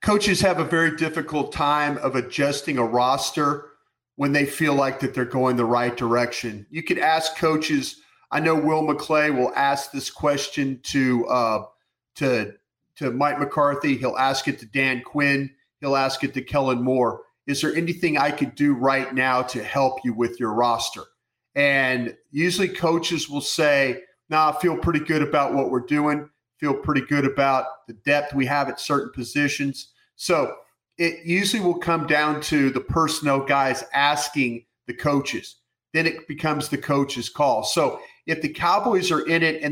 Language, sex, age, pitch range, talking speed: English, male, 40-59, 130-150 Hz, 175 wpm